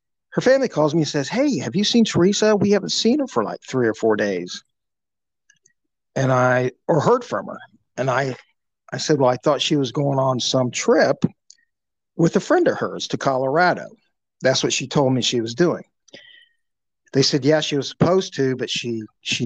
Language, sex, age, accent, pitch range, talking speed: English, male, 50-69, American, 125-180 Hz, 200 wpm